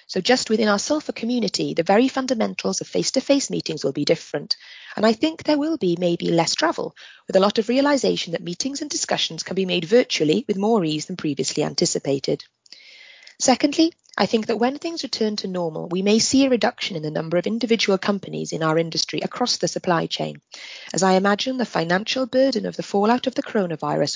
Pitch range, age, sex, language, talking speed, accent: 165-245 Hz, 30-49, female, English, 205 wpm, British